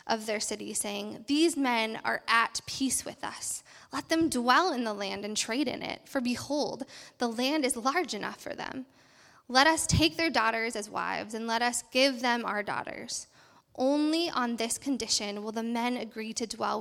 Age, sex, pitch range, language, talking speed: 10-29, female, 215-255 Hz, English, 195 wpm